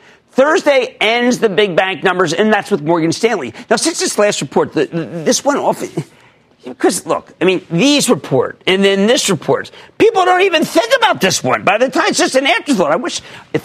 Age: 50-69